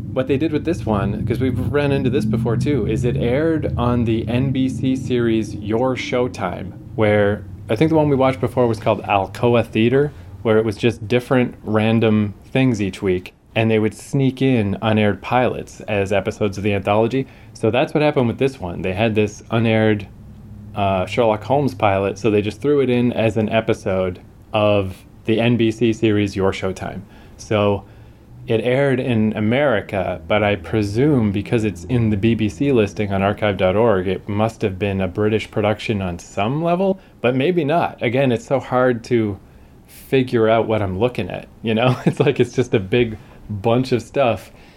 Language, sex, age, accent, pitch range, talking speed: English, male, 20-39, American, 105-125 Hz, 180 wpm